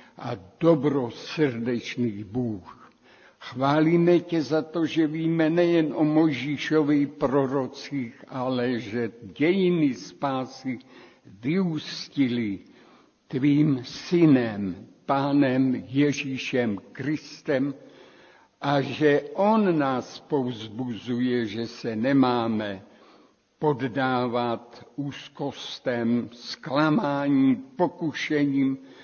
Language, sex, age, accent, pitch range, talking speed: Czech, male, 60-79, native, 125-155 Hz, 70 wpm